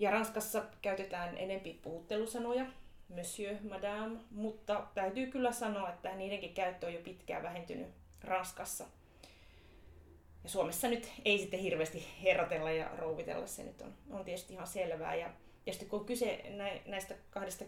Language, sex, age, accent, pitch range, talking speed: Finnish, female, 30-49, native, 175-215 Hz, 145 wpm